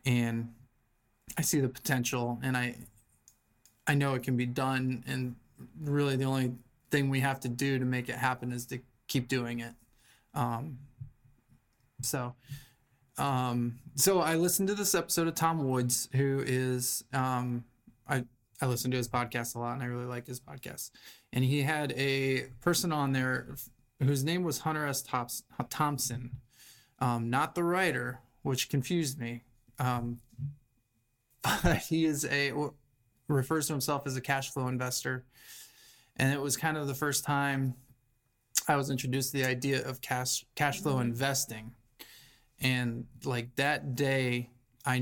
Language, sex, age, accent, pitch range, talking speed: English, male, 20-39, American, 120-140 Hz, 155 wpm